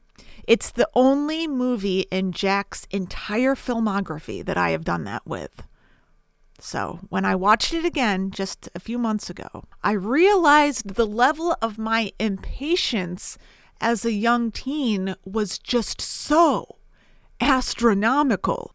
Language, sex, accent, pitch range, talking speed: English, female, American, 195-250 Hz, 130 wpm